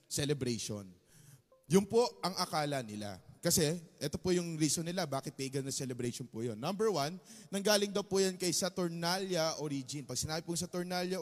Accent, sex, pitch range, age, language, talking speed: native, male, 135-180 Hz, 20-39, Filipino, 165 wpm